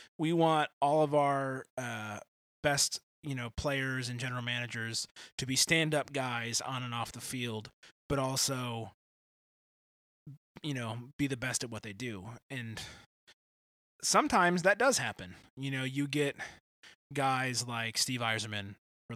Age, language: 20-39, English